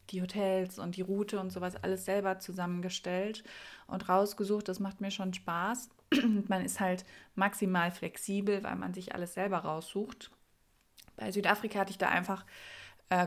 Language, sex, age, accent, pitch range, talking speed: German, female, 20-39, German, 175-200 Hz, 160 wpm